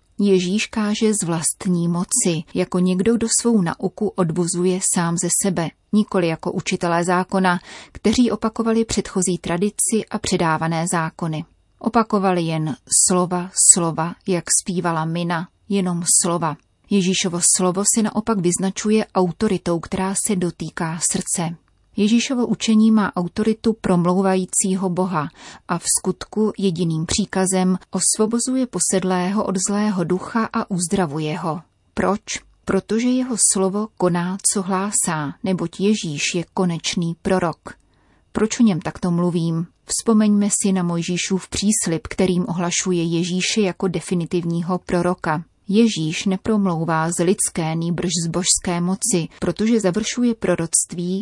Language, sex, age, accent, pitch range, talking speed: Czech, female, 30-49, native, 175-205 Hz, 120 wpm